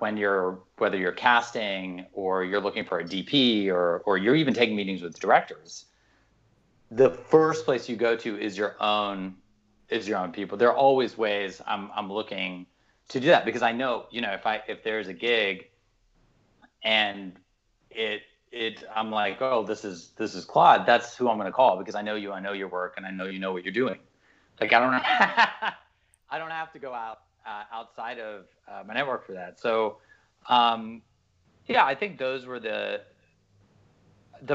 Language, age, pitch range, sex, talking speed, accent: English, 30-49, 95-120 Hz, male, 195 wpm, American